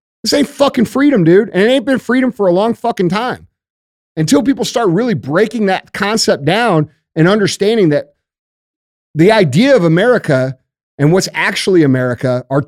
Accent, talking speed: American, 165 wpm